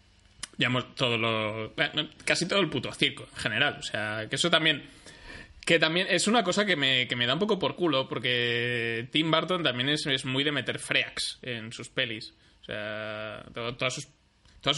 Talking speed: 200 wpm